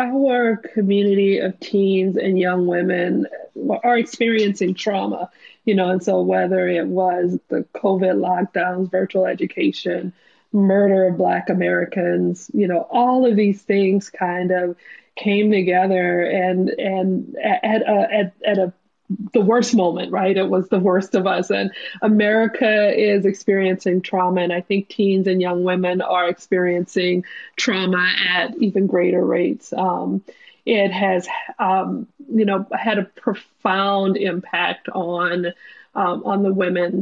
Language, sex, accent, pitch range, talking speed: English, female, American, 180-210 Hz, 140 wpm